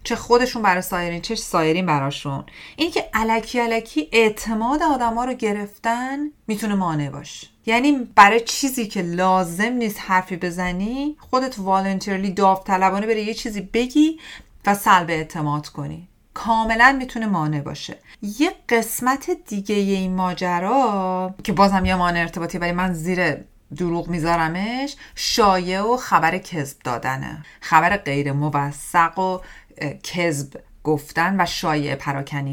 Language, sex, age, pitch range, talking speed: Persian, female, 30-49, 165-220 Hz, 130 wpm